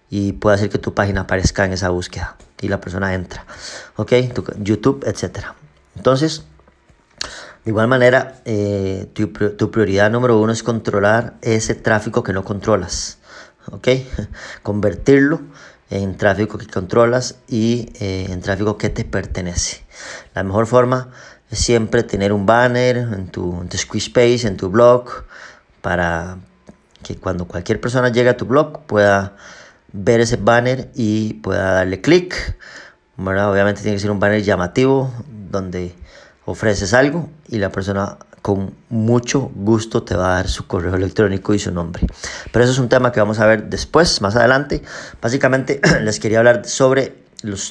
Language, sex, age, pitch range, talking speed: Spanish, male, 30-49, 95-125 Hz, 160 wpm